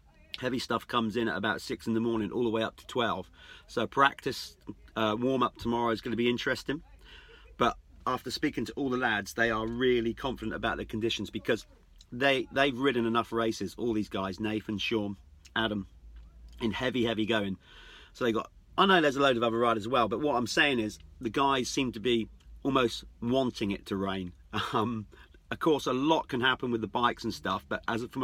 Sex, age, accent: male, 40-59, British